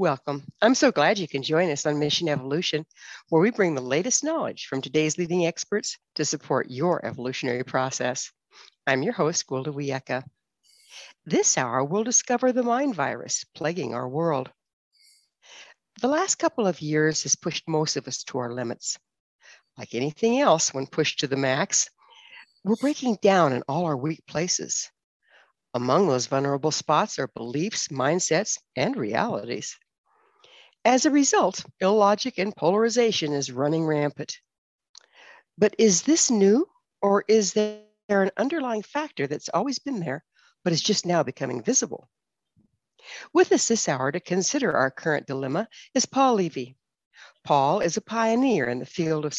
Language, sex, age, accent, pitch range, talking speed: English, female, 60-79, American, 145-240 Hz, 155 wpm